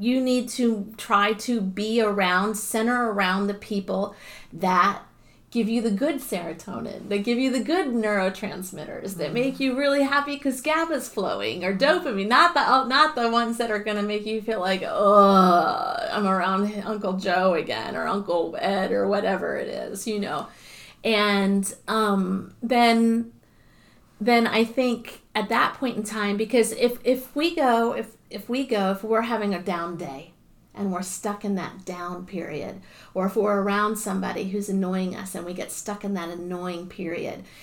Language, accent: English, American